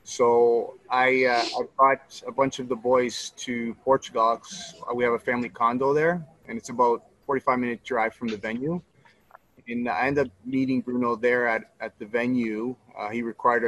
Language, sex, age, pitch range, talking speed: English, male, 30-49, 120-145 Hz, 180 wpm